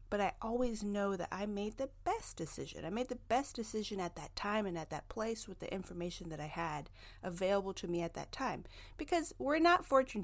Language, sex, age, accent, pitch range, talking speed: English, female, 30-49, American, 170-225 Hz, 225 wpm